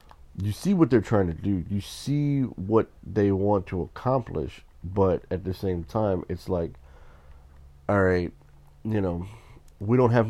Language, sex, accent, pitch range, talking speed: English, male, American, 85-105 Hz, 165 wpm